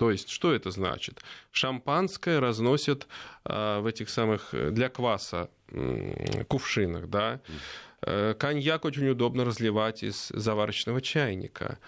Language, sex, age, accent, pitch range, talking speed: Russian, male, 20-39, native, 105-145 Hz, 120 wpm